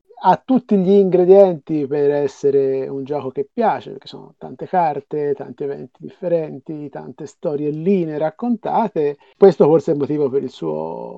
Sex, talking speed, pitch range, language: male, 150 wpm, 145-190 Hz, Italian